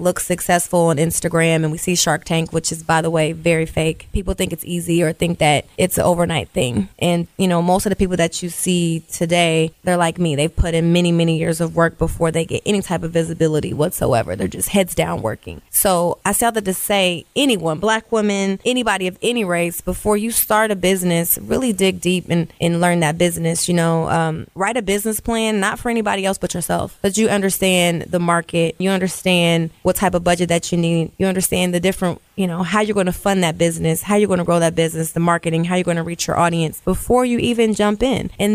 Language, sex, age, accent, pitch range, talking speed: English, female, 20-39, American, 170-205 Hz, 235 wpm